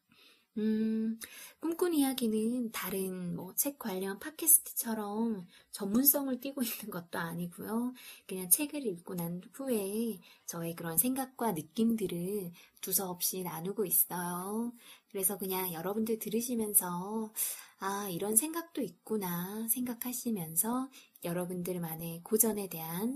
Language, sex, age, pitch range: Korean, female, 20-39, 180-245 Hz